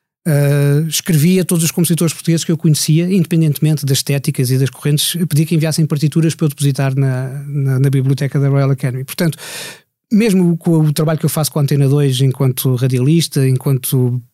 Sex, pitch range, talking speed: male, 130-155 Hz, 195 wpm